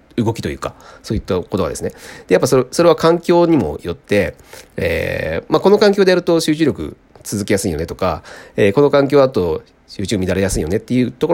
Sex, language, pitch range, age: male, Japanese, 95-155 Hz, 40-59